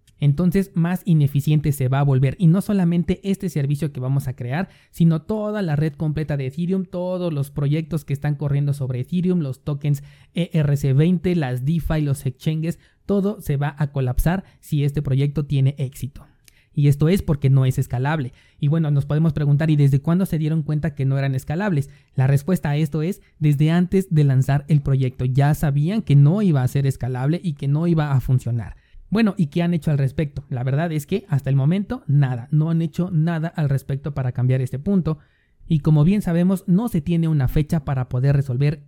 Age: 30-49